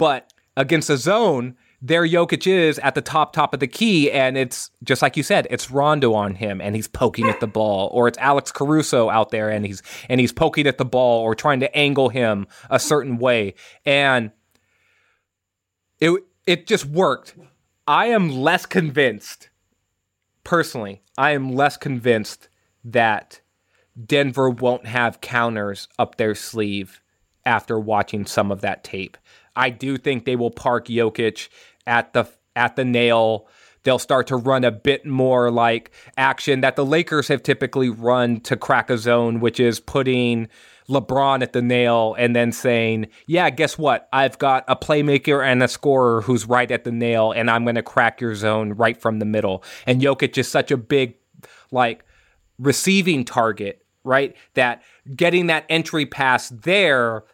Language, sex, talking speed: English, male, 170 wpm